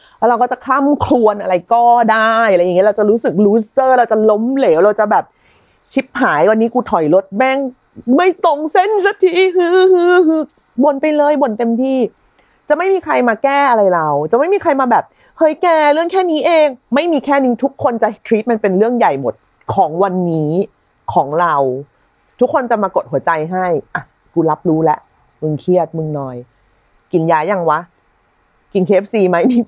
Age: 30-49